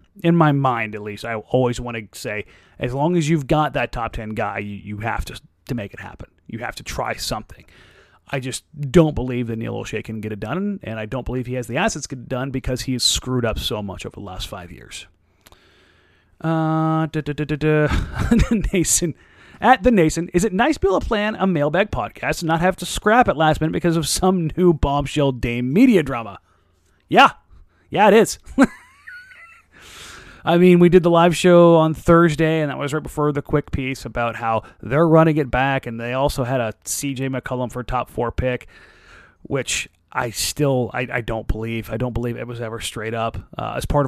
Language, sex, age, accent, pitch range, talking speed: English, male, 30-49, American, 115-165 Hz, 210 wpm